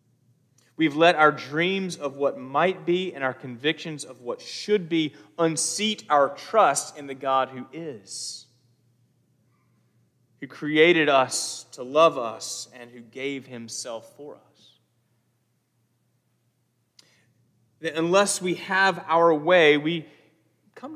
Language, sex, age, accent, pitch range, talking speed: English, male, 30-49, American, 120-155 Hz, 120 wpm